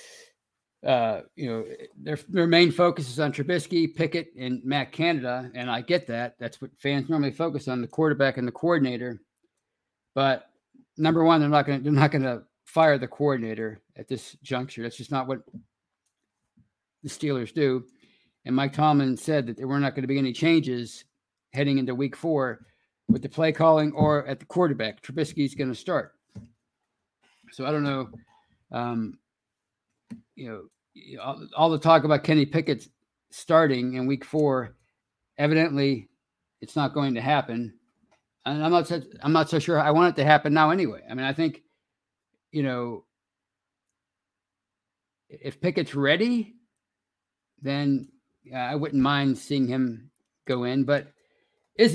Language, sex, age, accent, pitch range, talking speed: English, male, 50-69, American, 125-160 Hz, 160 wpm